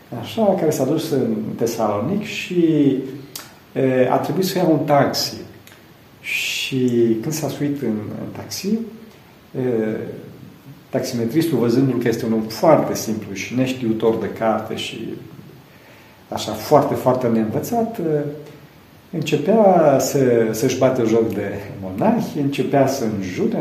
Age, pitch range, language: 50-69, 115-145 Hz, Romanian